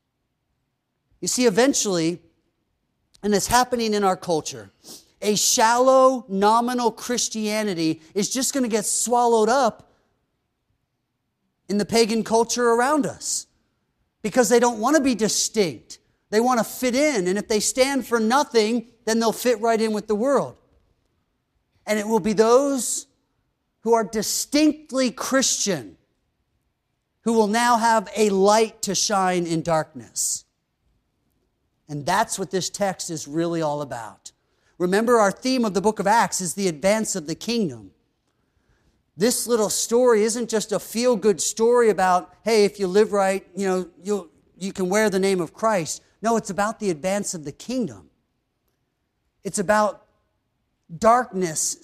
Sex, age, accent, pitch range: male, 40-59, American, 175-230 Hz